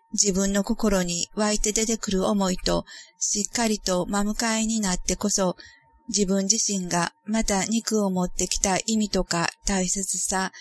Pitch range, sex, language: 185-220 Hz, female, Japanese